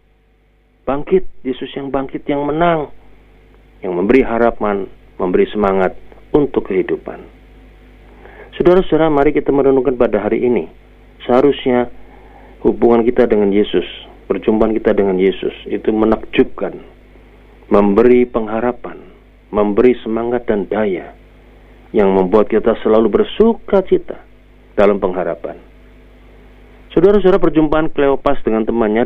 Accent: native